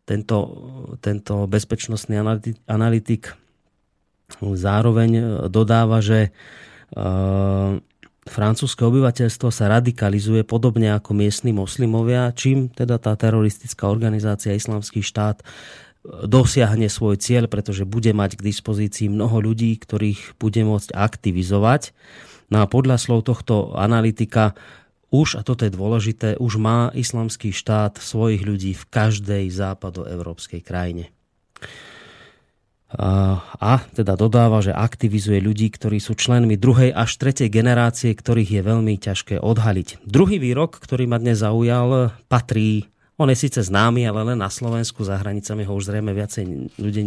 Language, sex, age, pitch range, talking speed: Slovak, male, 30-49, 105-115 Hz, 125 wpm